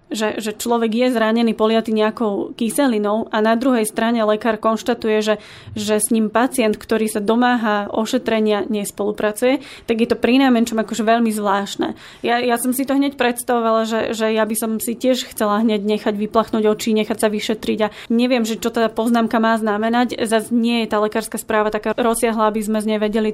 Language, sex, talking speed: Slovak, female, 195 wpm